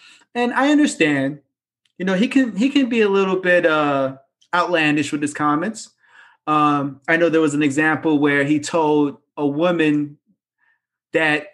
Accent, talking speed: American, 160 wpm